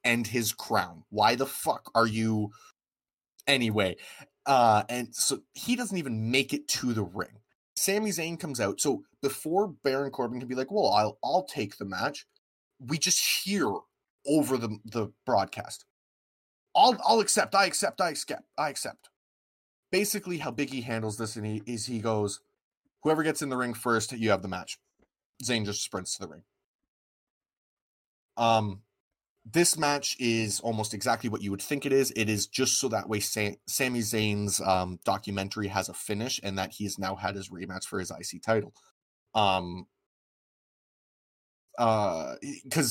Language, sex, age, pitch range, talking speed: English, male, 20-39, 100-130 Hz, 165 wpm